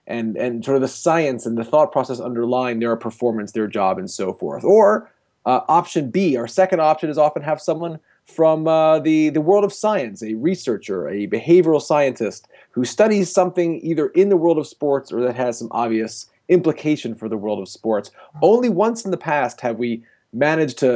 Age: 30-49